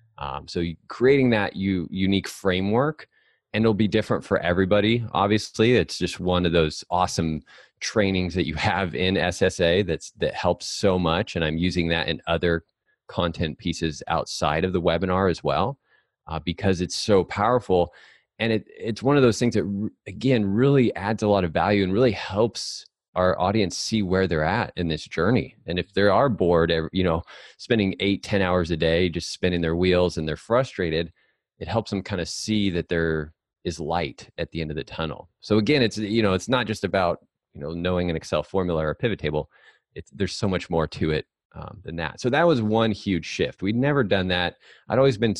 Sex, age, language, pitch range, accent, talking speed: male, 20-39, English, 85-105 Hz, American, 205 wpm